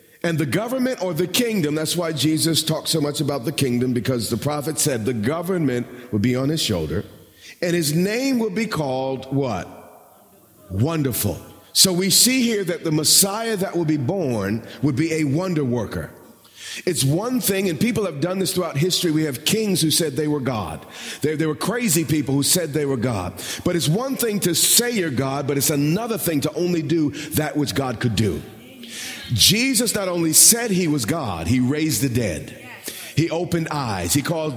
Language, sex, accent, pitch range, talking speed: English, male, American, 145-195 Hz, 195 wpm